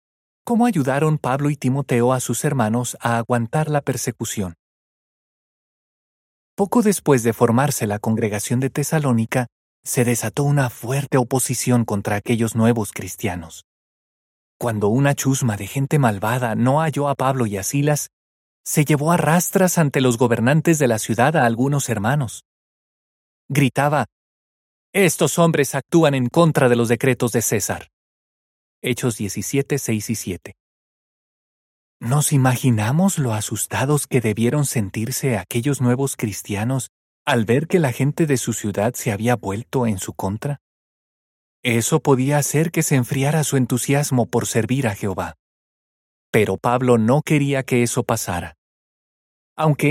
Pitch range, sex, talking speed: 110-145 Hz, male, 140 wpm